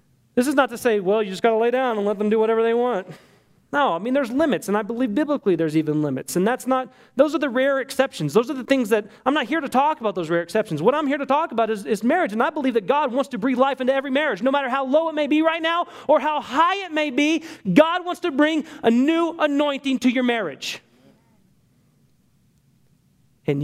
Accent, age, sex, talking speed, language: American, 30-49, male, 255 wpm, English